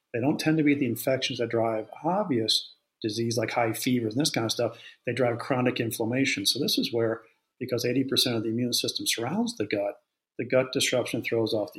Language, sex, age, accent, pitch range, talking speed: English, male, 40-59, American, 115-130 Hz, 215 wpm